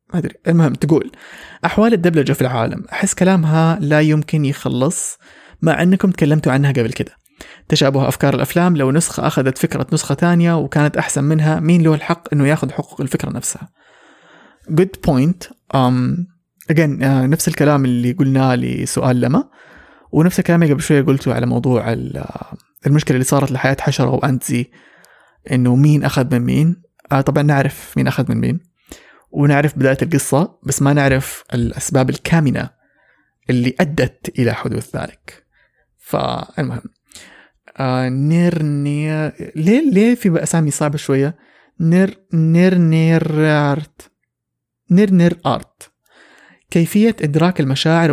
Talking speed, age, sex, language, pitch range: 135 wpm, 20-39, male, English, 135-170 Hz